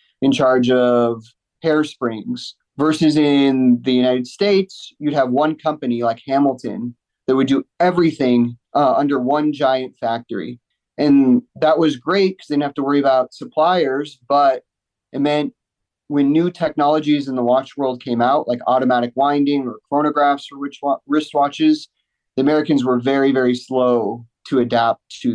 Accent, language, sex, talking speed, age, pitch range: American, English, male, 150 wpm, 30-49, 125-150 Hz